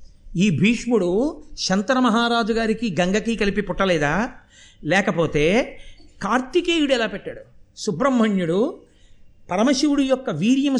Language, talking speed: Telugu, 85 wpm